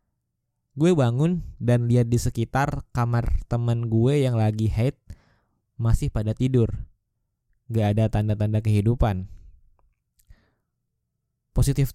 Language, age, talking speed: Indonesian, 20-39, 100 wpm